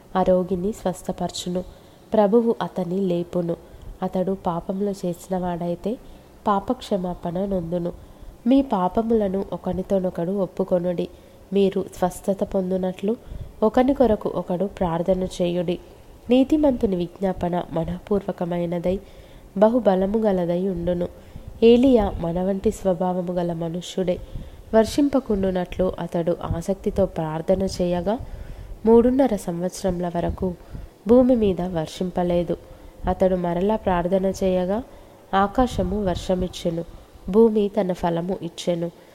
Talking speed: 85 wpm